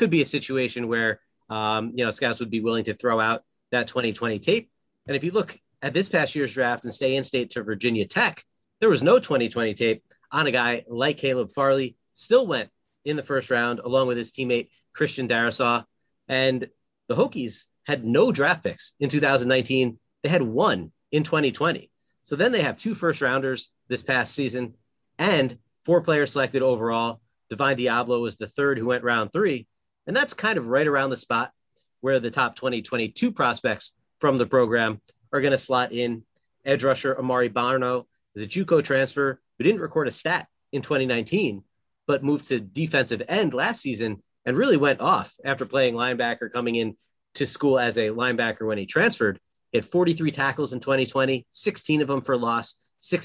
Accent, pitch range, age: American, 120-140 Hz, 30-49